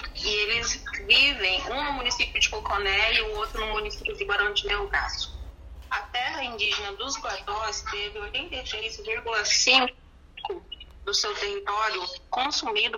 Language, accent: Portuguese, Brazilian